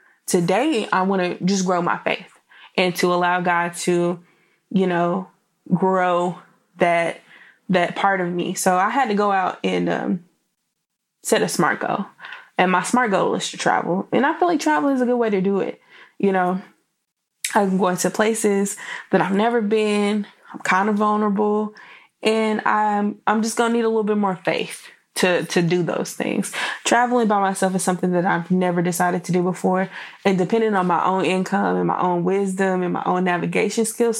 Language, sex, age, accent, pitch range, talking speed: English, female, 20-39, American, 180-215 Hz, 195 wpm